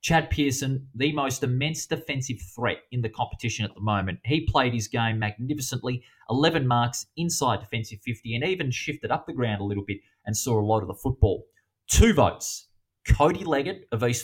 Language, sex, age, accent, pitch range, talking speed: English, male, 20-39, Australian, 110-135 Hz, 190 wpm